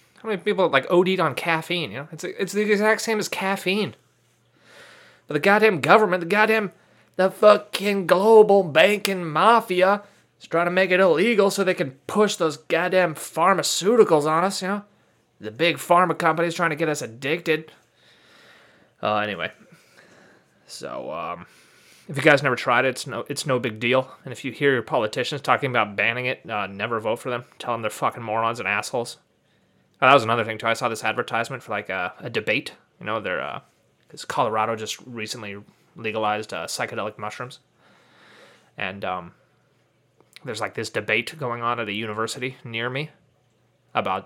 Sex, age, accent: male, 30-49, American